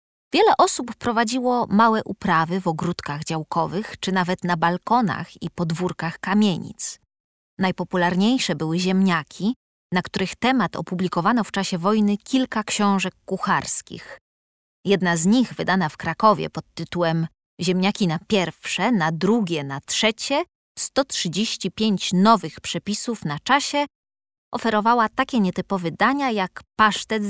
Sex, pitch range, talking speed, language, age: female, 175-225 Hz, 120 wpm, Polish, 20-39